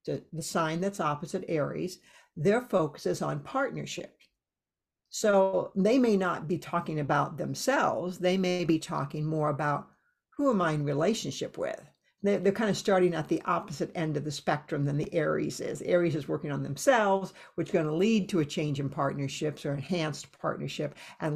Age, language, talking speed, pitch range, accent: 60-79, English, 185 wpm, 160-200 Hz, American